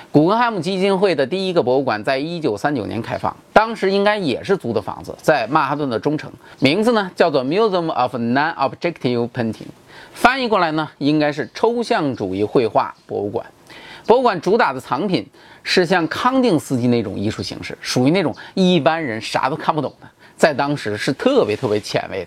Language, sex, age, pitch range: Chinese, male, 30-49, 125-205 Hz